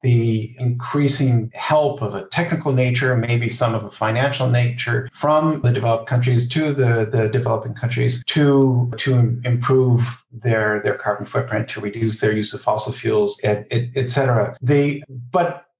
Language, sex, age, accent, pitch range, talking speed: English, male, 50-69, American, 115-135 Hz, 155 wpm